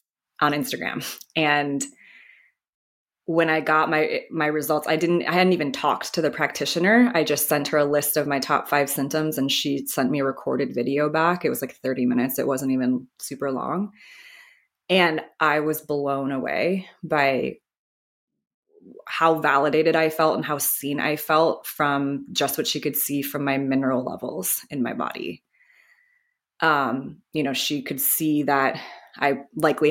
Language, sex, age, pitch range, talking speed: English, female, 20-39, 135-160 Hz, 170 wpm